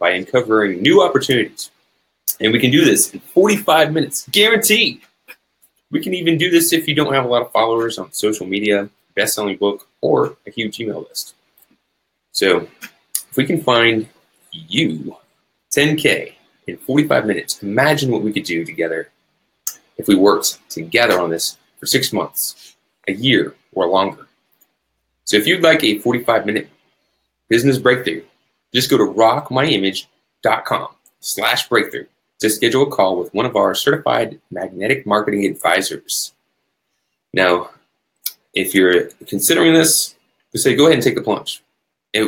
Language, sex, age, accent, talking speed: English, male, 20-39, American, 150 wpm